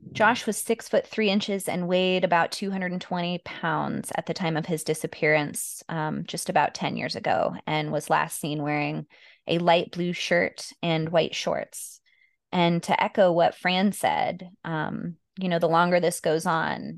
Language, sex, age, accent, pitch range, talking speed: English, female, 20-39, American, 160-180 Hz, 175 wpm